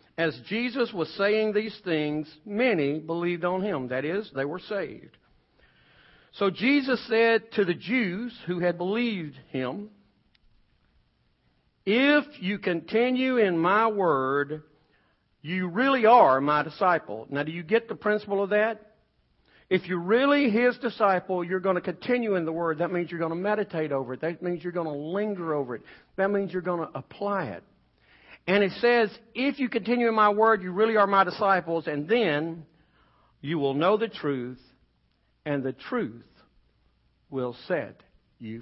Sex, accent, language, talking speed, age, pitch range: male, American, English, 165 wpm, 50-69, 135-210 Hz